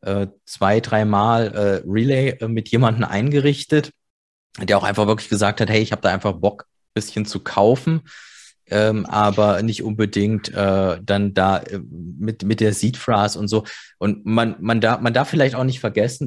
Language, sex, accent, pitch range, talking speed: German, male, German, 100-115 Hz, 160 wpm